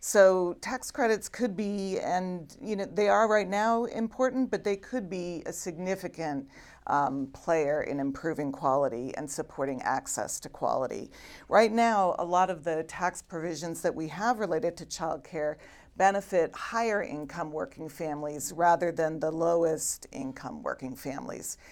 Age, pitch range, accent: 50-69, 155-195 Hz, American